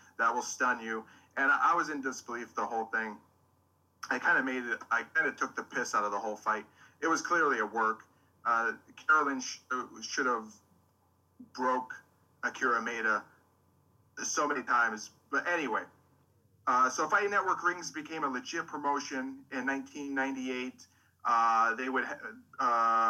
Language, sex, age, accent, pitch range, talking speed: English, male, 30-49, American, 110-140 Hz, 160 wpm